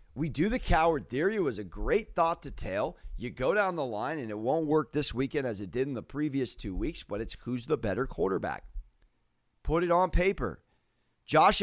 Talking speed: 215 wpm